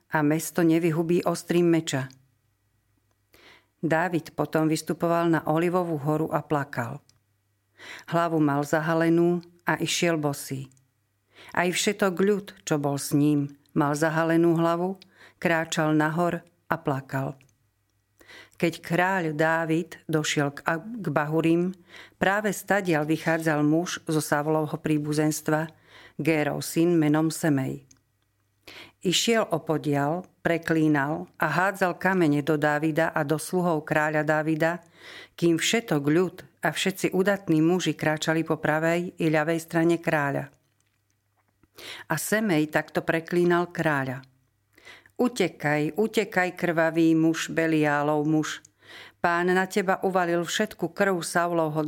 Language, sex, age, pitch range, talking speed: Slovak, female, 50-69, 150-170 Hz, 110 wpm